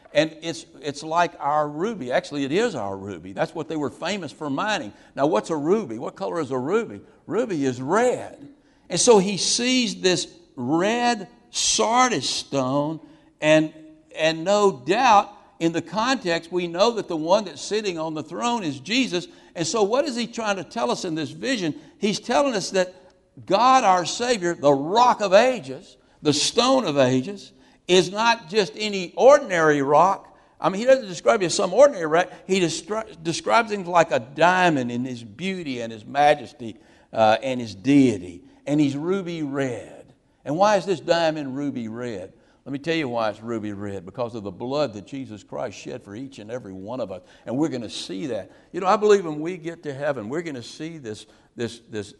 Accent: American